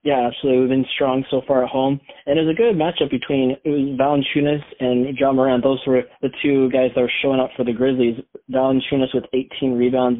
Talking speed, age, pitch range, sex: 210 wpm, 20-39, 130-145 Hz, male